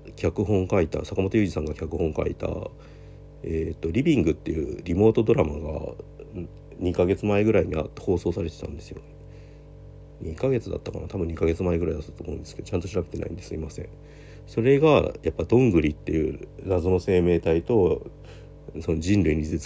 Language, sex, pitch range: Japanese, male, 80-100 Hz